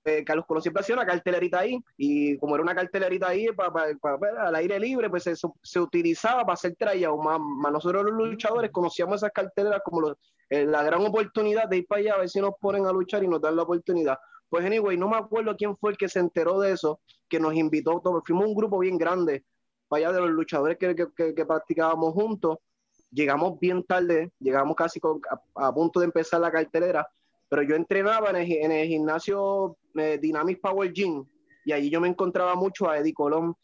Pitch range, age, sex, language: 160-205 Hz, 20-39, male, Spanish